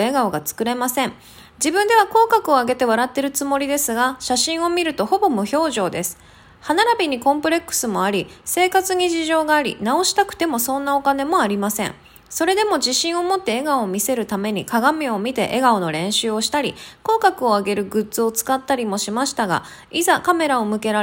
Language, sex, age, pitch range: Japanese, female, 20-39, 215-320 Hz